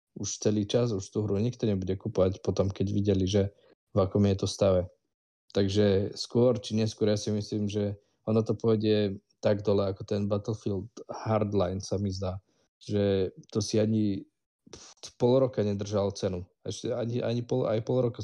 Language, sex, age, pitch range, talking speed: Slovak, male, 20-39, 100-110 Hz, 175 wpm